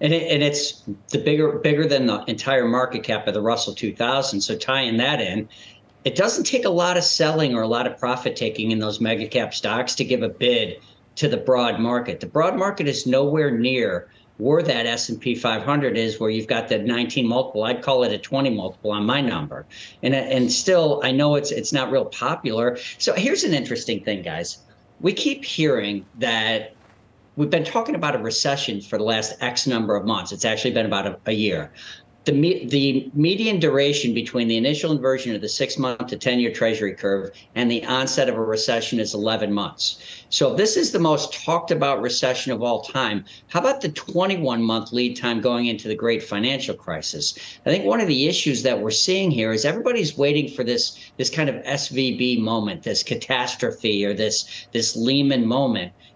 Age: 50-69